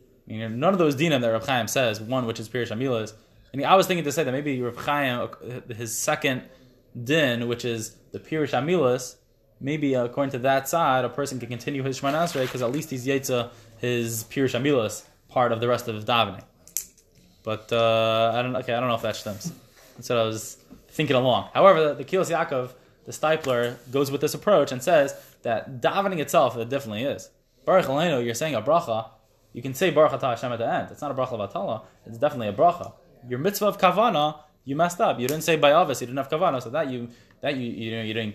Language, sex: English, male